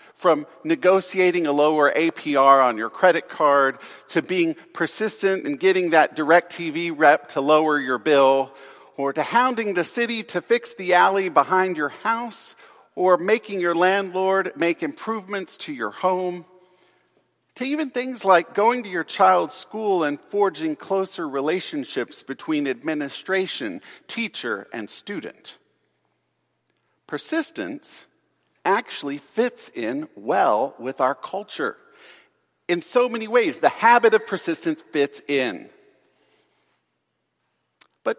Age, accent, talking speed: 50-69, American, 125 wpm